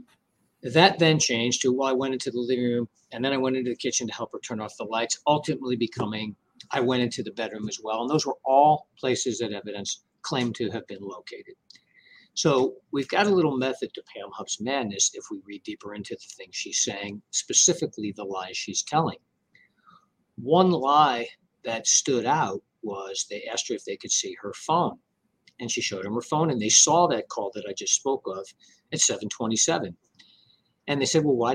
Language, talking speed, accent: English, 205 wpm, American